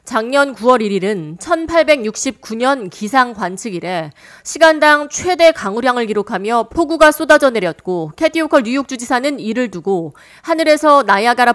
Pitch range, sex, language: 195-275 Hz, female, Korean